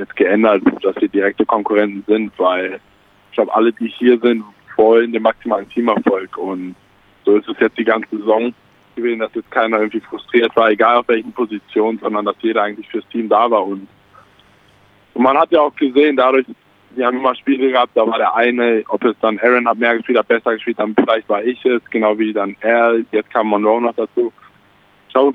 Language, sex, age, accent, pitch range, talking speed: German, male, 20-39, German, 100-120 Hz, 205 wpm